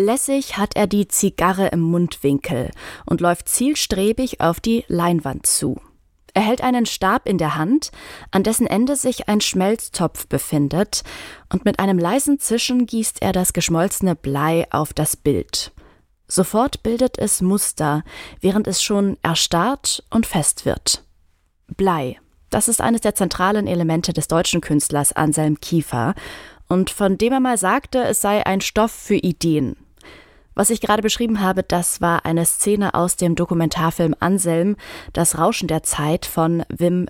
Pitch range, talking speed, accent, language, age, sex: 165-215 Hz, 155 wpm, German, German, 20-39, female